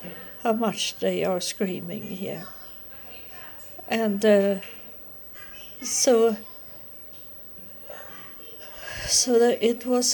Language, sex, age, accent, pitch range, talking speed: English, female, 60-79, Swedish, 195-230 Hz, 75 wpm